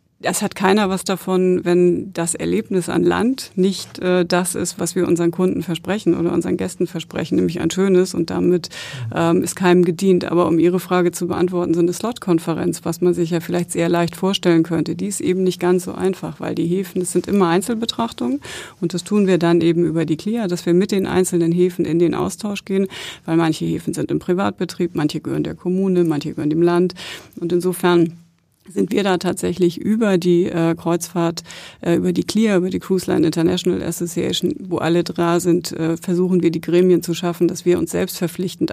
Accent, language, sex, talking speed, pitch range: German, German, female, 205 wpm, 170-185 Hz